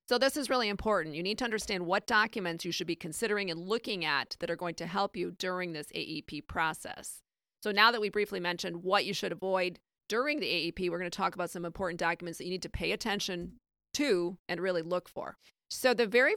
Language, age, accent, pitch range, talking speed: English, 40-59, American, 175-220 Hz, 230 wpm